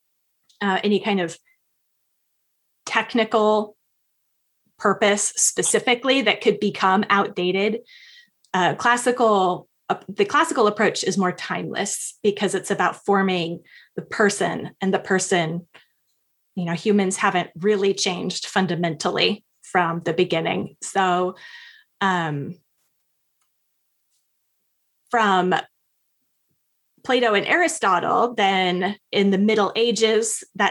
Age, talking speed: 20-39, 100 wpm